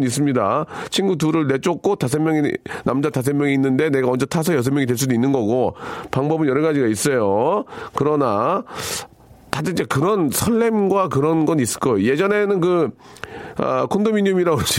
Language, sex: Korean, male